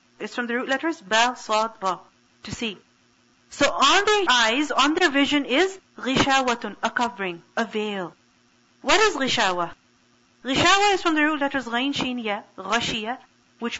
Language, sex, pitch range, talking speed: English, female, 210-295 Hz, 150 wpm